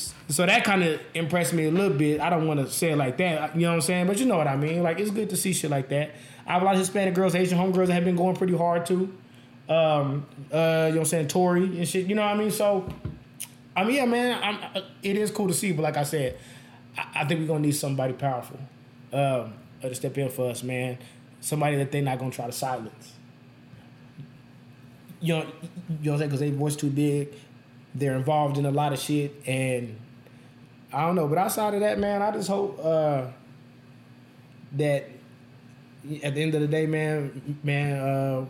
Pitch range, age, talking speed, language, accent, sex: 130-175 Hz, 20-39, 235 wpm, English, American, male